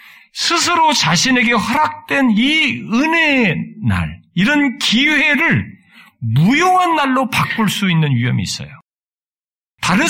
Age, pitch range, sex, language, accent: 50-69, 165-260 Hz, male, Korean, native